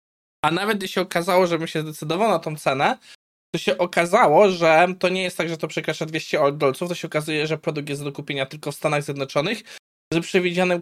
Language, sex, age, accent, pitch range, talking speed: Polish, male, 20-39, native, 140-185 Hz, 215 wpm